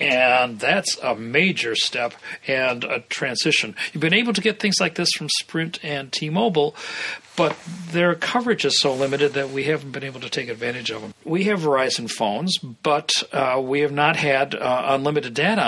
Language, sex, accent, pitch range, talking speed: English, male, American, 135-175 Hz, 190 wpm